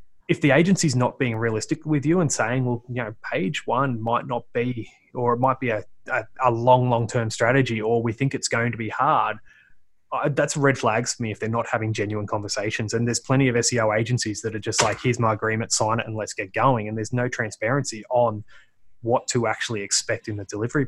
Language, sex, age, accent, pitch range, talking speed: English, male, 20-39, Australian, 115-140 Hz, 225 wpm